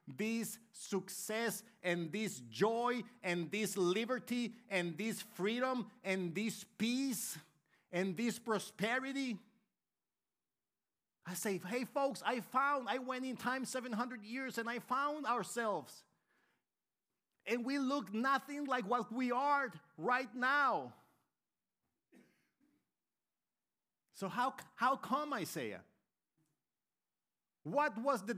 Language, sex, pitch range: English, male, 175-250 Hz